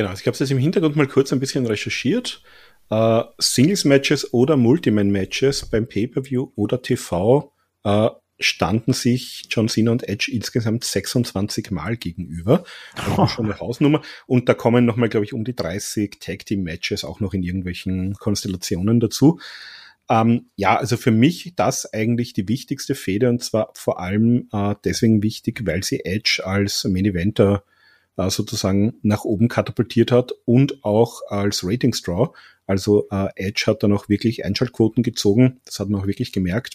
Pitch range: 100-125 Hz